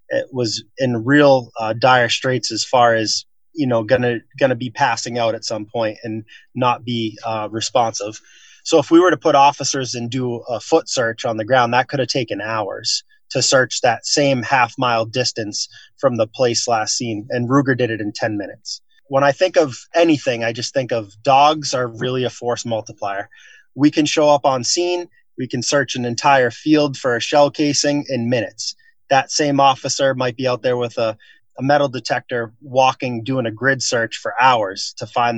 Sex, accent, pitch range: male, American, 115-140 Hz